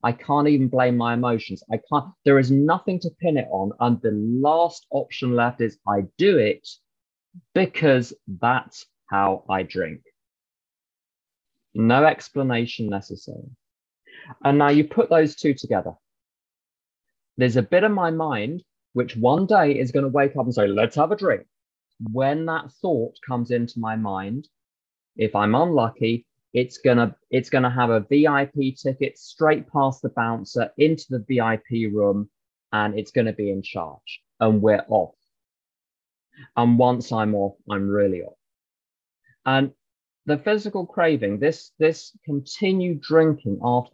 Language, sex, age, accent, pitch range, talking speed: English, male, 20-39, British, 110-145 Hz, 150 wpm